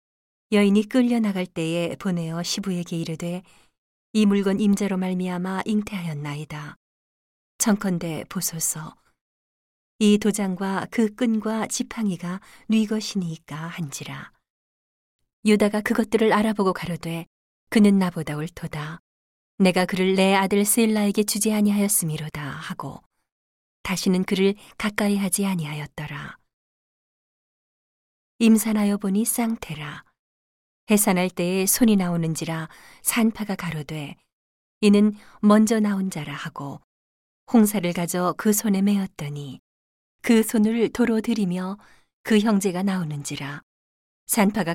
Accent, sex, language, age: native, female, Korean, 40-59